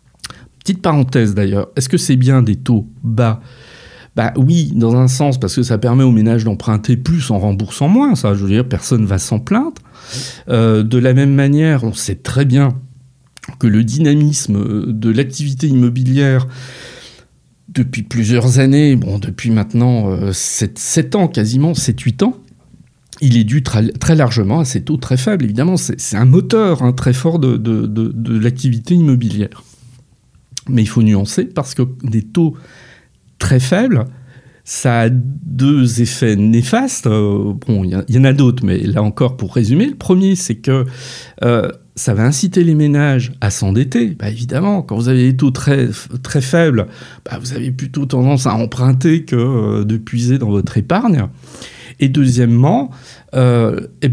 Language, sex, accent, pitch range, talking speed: French, male, French, 115-140 Hz, 165 wpm